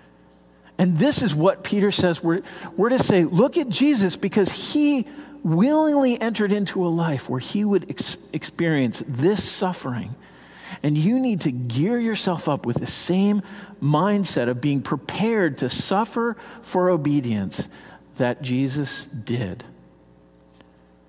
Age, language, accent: 50-69, English, American